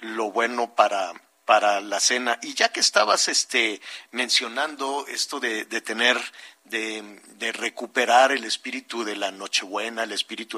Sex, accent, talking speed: male, Mexican, 145 wpm